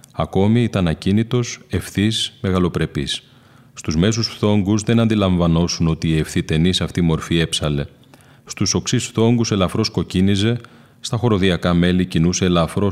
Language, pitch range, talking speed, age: Greek, 80-100 Hz, 125 wpm, 30-49